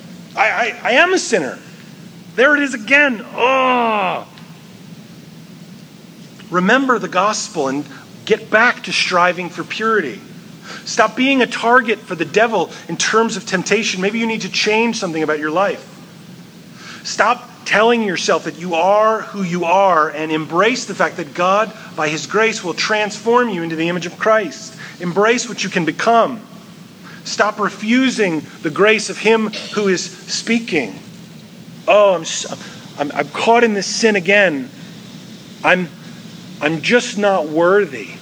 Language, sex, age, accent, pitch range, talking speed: English, male, 40-59, American, 170-220 Hz, 150 wpm